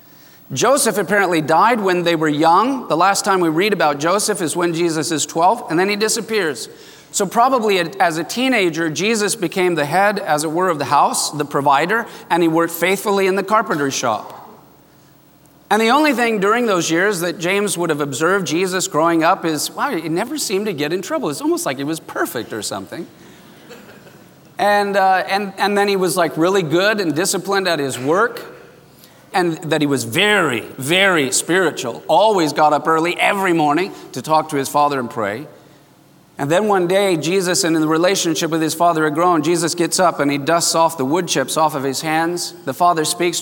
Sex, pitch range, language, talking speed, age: male, 150-195 Hz, English, 200 wpm, 40-59